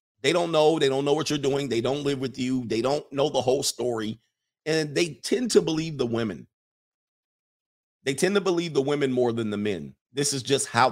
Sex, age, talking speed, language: male, 50-69, 225 wpm, English